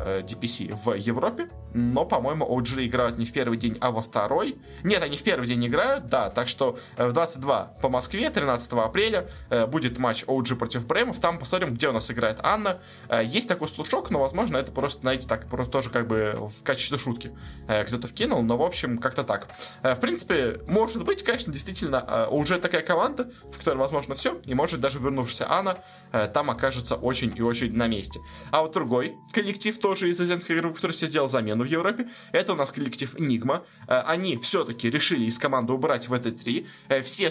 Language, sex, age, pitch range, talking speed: Russian, male, 20-39, 115-150 Hz, 190 wpm